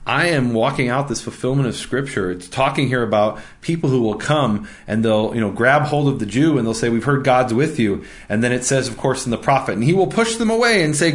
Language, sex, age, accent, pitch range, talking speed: English, male, 30-49, American, 110-140 Hz, 270 wpm